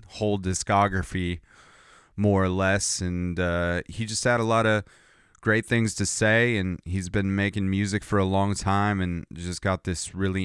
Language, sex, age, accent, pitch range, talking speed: English, male, 30-49, American, 95-110 Hz, 180 wpm